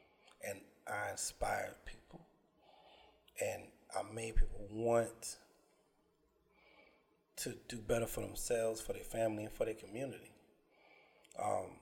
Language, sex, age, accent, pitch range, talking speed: English, male, 30-49, American, 110-130 Hz, 105 wpm